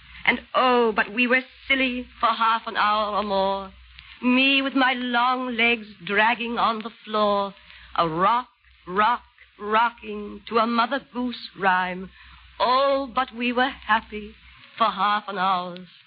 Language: English